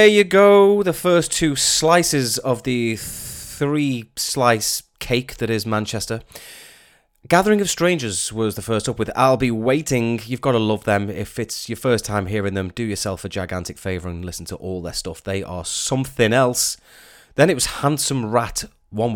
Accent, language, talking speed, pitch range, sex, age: British, English, 180 wpm, 100-135 Hz, male, 30-49